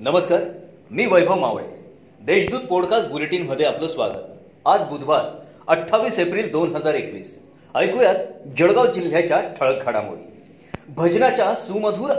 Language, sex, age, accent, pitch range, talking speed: Marathi, male, 40-59, native, 175-235 Hz, 95 wpm